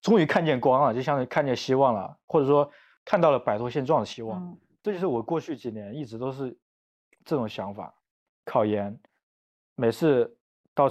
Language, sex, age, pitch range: Chinese, male, 20-39, 110-145 Hz